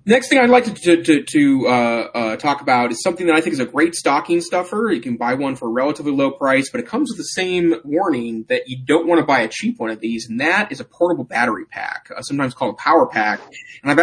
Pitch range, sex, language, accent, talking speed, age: 120-170 Hz, male, English, American, 270 wpm, 30-49